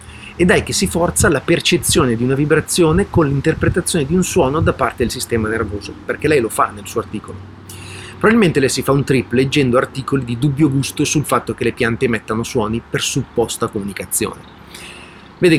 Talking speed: 190 wpm